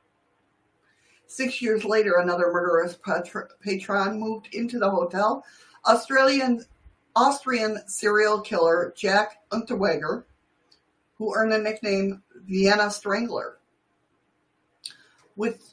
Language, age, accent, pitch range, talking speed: English, 50-69, American, 170-225 Hz, 90 wpm